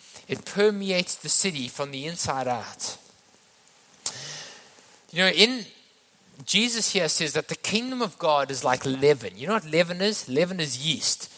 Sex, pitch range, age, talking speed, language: male, 165-220 Hz, 20-39, 160 wpm, English